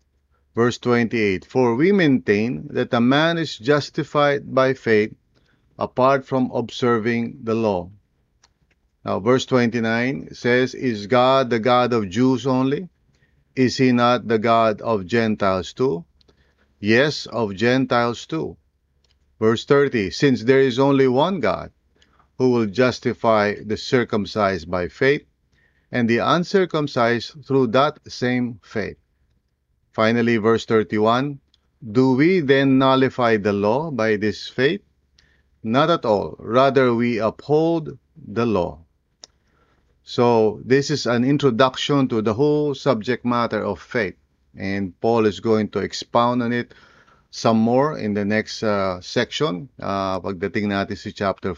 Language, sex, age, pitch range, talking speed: English, male, 50-69, 100-130 Hz, 130 wpm